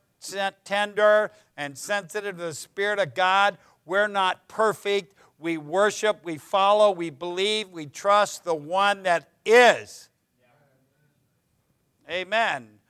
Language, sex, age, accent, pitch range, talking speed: English, male, 60-79, American, 170-220 Hz, 110 wpm